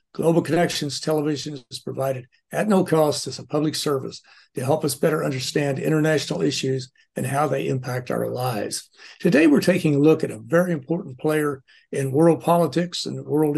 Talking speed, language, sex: 175 wpm, English, male